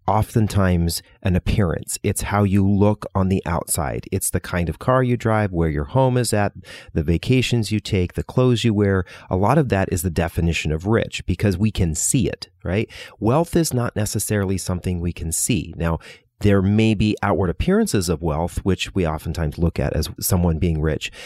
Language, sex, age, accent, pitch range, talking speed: English, male, 40-59, American, 90-115 Hz, 200 wpm